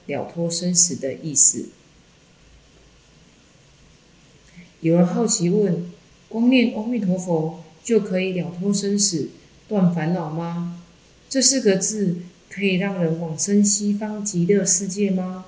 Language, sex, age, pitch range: Chinese, female, 30-49, 170-205 Hz